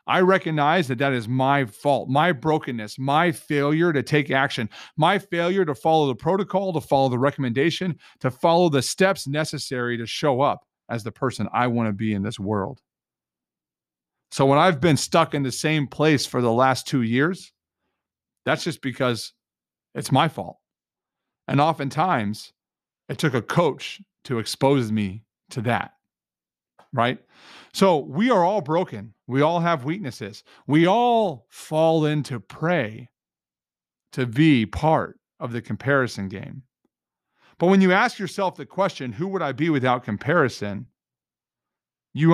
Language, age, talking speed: English, 40-59, 155 wpm